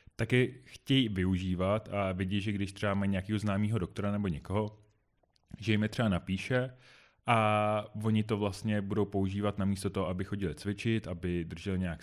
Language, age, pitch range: Czech, 30-49, 95-110 Hz